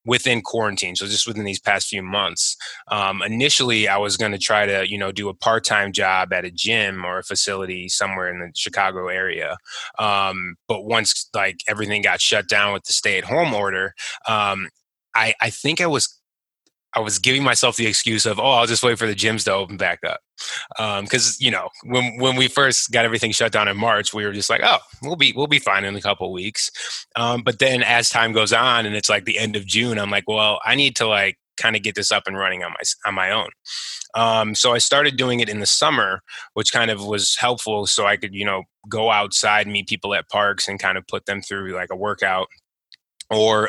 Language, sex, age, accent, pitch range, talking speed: English, male, 20-39, American, 100-115 Hz, 235 wpm